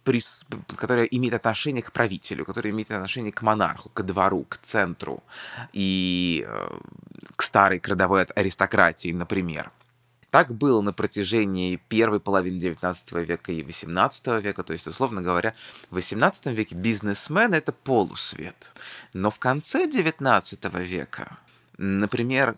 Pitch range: 90-125 Hz